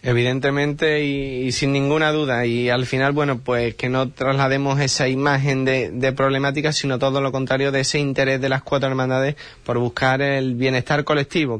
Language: Spanish